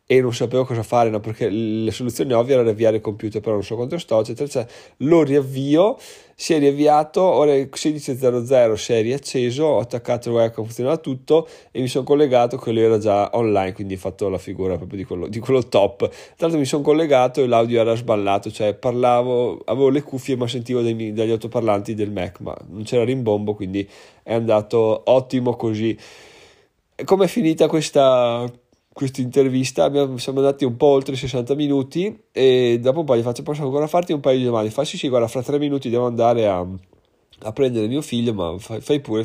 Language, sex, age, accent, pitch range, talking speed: Italian, male, 20-39, native, 110-145 Hz, 195 wpm